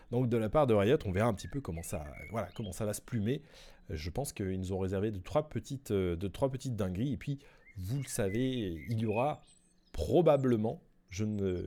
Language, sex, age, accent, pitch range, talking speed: French, male, 30-49, French, 100-140 Hz, 220 wpm